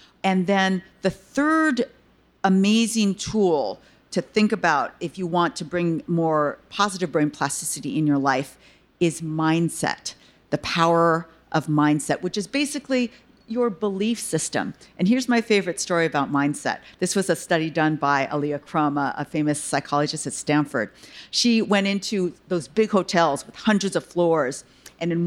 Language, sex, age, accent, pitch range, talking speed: English, female, 50-69, American, 160-205 Hz, 155 wpm